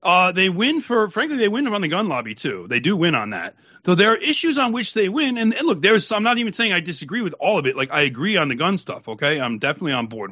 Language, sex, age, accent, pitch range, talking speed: English, male, 40-59, American, 155-255 Hz, 295 wpm